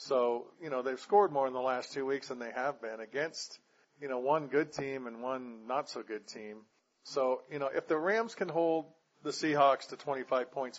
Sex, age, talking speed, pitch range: male, 40-59, 210 wpm, 120-145 Hz